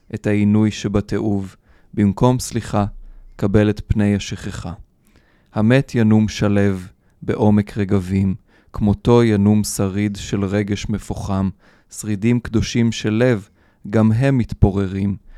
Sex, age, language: male, 20-39, Hebrew